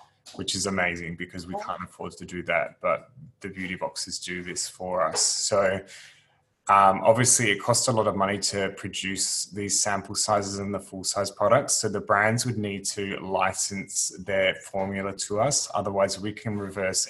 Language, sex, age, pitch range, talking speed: English, male, 20-39, 95-100 Hz, 185 wpm